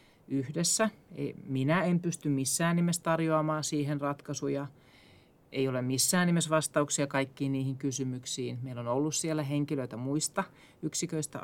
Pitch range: 125-150 Hz